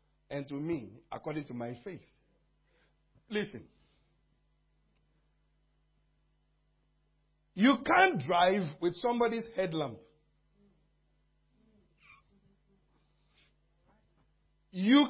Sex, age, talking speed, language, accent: male, 50-69, 60 wpm, English, Nigerian